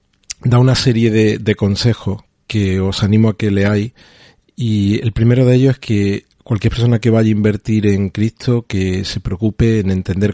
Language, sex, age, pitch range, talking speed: Spanish, male, 40-59, 100-115 Hz, 185 wpm